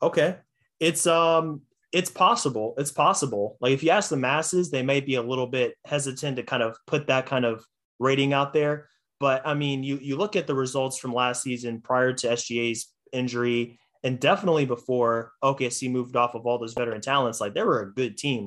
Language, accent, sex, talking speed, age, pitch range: English, American, male, 205 wpm, 20-39, 115-135 Hz